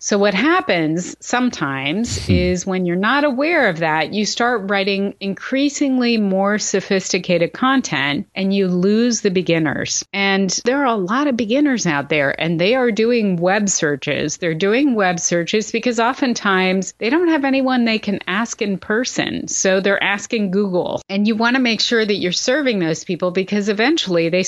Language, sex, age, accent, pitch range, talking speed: English, female, 30-49, American, 175-225 Hz, 175 wpm